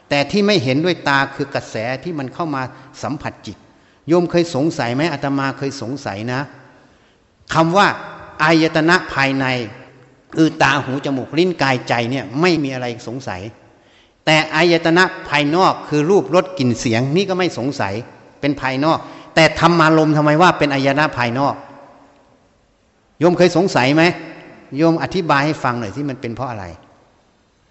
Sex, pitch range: male, 125-165 Hz